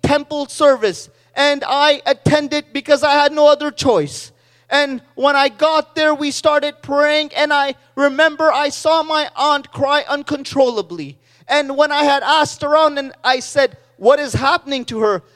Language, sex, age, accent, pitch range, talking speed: English, male, 30-49, American, 270-300 Hz, 165 wpm